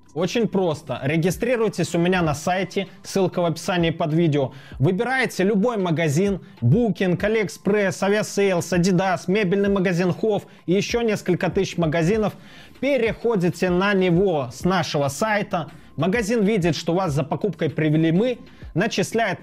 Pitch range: 165-210 Hz